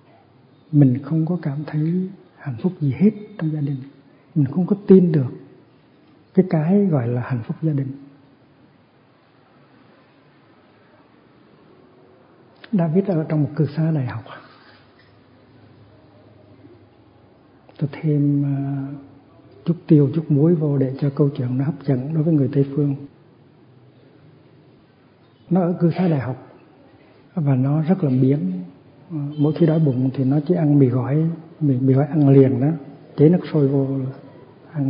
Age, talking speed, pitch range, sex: 60-79, 145 wpm, 135-160 Hz, male